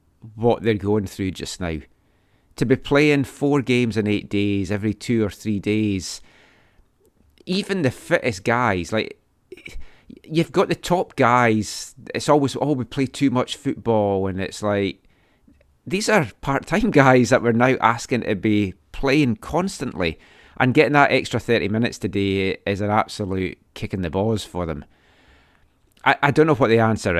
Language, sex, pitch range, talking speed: English, male, 100-125 Hz, 165 wpm